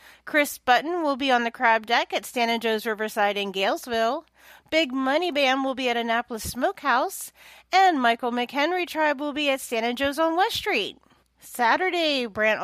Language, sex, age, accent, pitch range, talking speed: English, female, 40-59, American, 220-295 Hz, 180 wpm